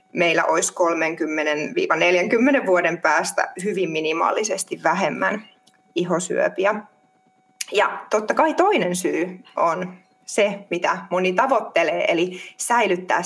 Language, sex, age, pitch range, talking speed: Finnish, female, 20-39, 175-220 Hz, 95 wpm